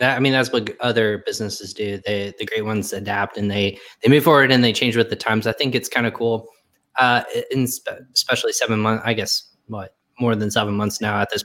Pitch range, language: 105-115 Hz, English